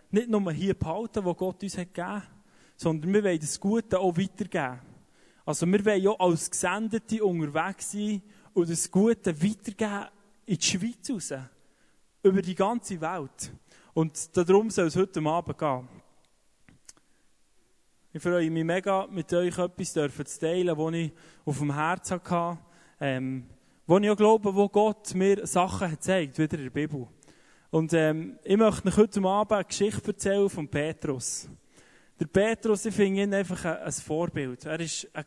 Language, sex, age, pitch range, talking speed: German, male, 20-39, 155-195 Hz, 165 wpm